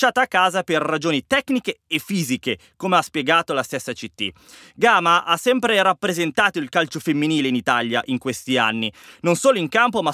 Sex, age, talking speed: male, 20-39, 185 wpm